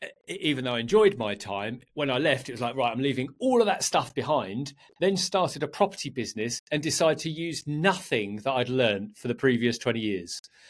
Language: English